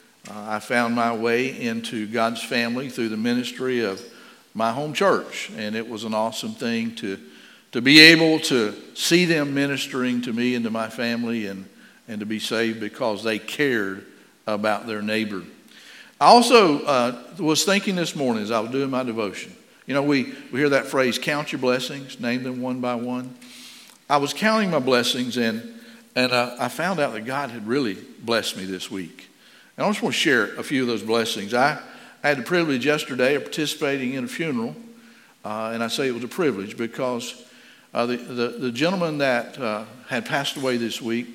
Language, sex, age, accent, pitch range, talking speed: English, male, 50-69, American, 115-160 Hz, 195 wpm